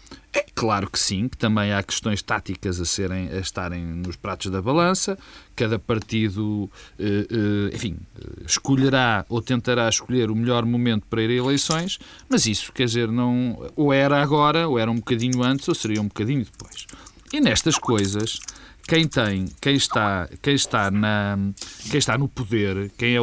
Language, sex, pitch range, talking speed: Portuguese, male, 100-160 Hz, 150 wpm